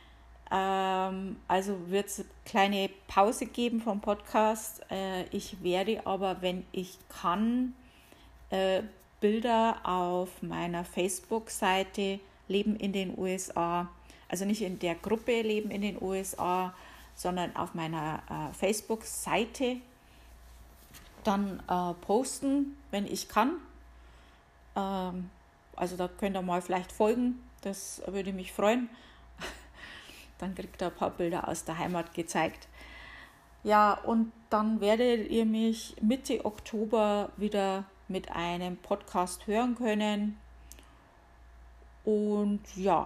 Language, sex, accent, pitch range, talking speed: German, female, German, 175-210 Hz, 110 wpm